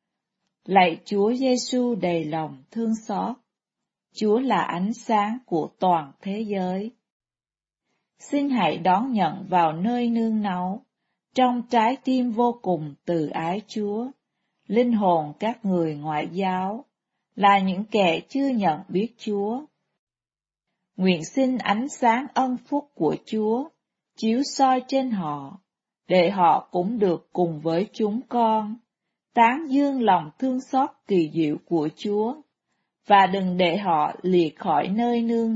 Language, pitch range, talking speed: Vietnamese, 185-245 Hz, 135 wpm